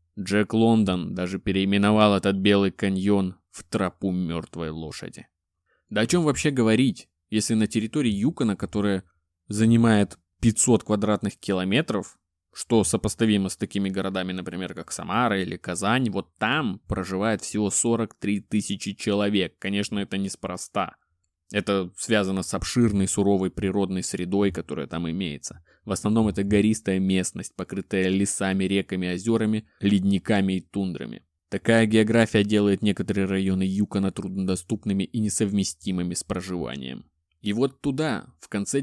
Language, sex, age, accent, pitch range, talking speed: Russian, male, 20-39, native, 95-110 Hz, 130 wpm